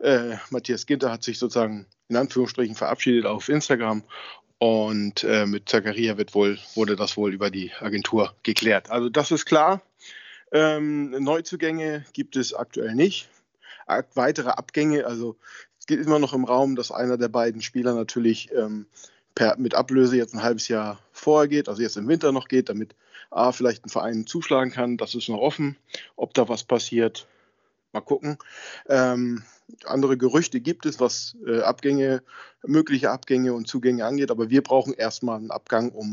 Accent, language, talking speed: German, German, 170 wpm